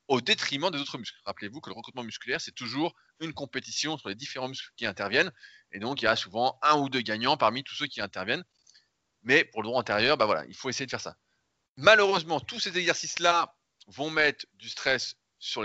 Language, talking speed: French, 220 wpm